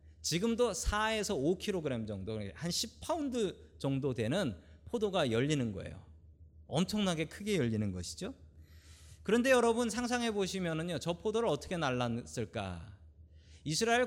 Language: Korean